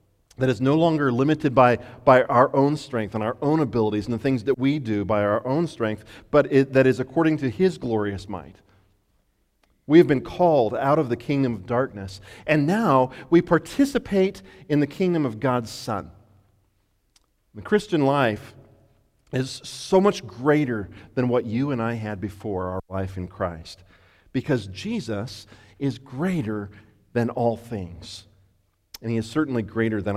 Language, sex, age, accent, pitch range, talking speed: English, male, 40-59, American, 105-150 Hz, 165 wpm